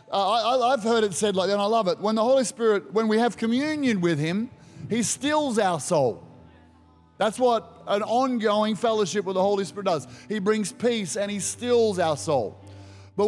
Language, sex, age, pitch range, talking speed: English, male, 30-49, 190-250 Hz, 205 wpm